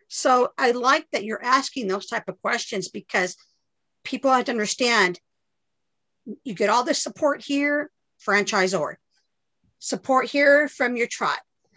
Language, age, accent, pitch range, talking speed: English, 50-69, American, 210-290 Hz, 140 wpm